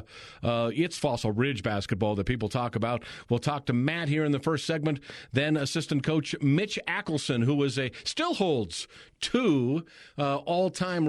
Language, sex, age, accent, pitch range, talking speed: English, male, 40-59, American, 125-155 Hz, 175 wpm